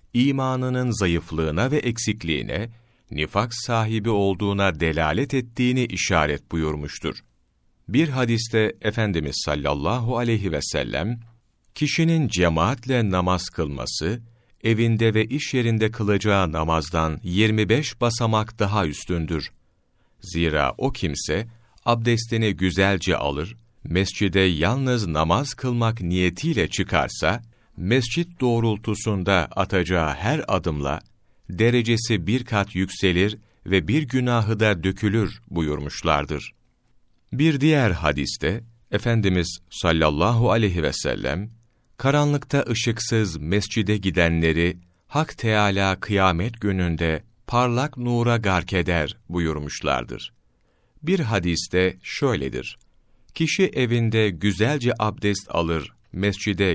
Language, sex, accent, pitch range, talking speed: Turkish, male, native, 85-120 Hz, 95 wpm